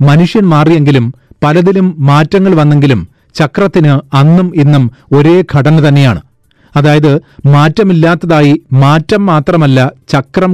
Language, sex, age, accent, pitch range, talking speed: Malayalam, male, 30-49, native, 140-170 Hz, 90 wpm